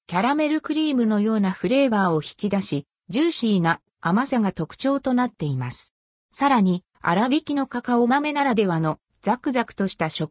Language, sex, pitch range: Japanese, female, 175-265 Hz